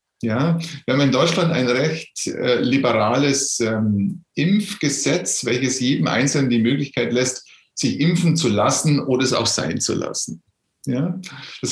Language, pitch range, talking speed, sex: German, 130-175 Hz, 140 wpm, male